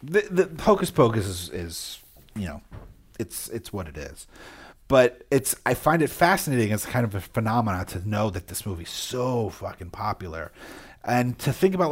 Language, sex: English, male